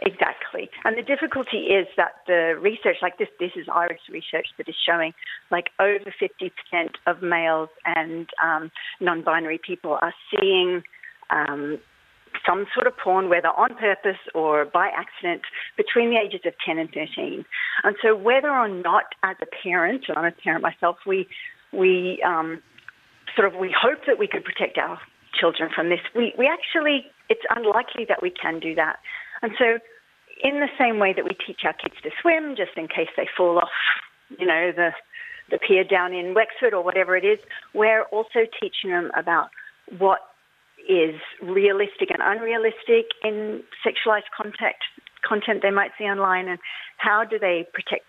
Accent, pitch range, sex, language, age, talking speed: Australian, 175-280 Hz, female, English, 40-59, 170 wpm